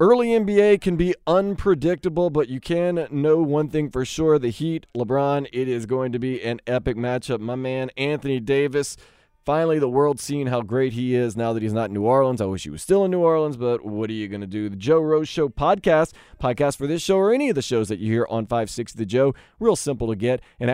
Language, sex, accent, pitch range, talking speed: English, male, American, 120-175 Hz, 240 wpm